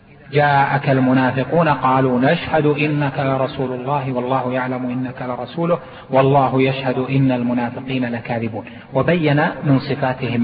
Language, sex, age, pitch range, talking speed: Arabic, male, 40-59, 135-180 Hz, 110 wpm